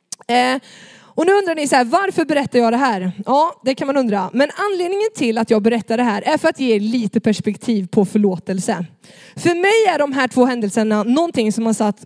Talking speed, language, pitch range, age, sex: 215 wpm, Swedish, 215-295 Hz, 20-39, female